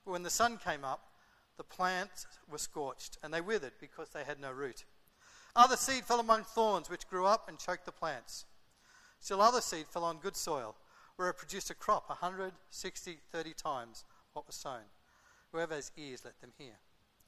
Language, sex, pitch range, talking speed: English, male, 185-255 Hz, 185 wpm